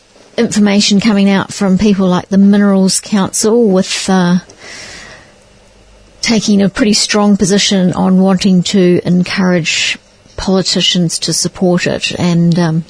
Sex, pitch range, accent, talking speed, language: female, 180-210 Hz, Australian, 120 wpm, English